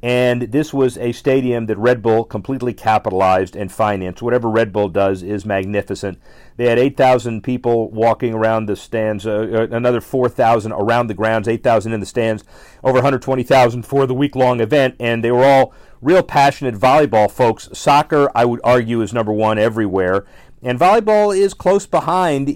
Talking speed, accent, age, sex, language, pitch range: 170 wpm, American, 40-59, male, English, 110-130 Hz